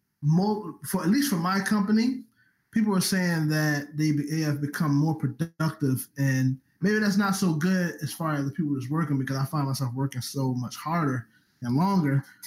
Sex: male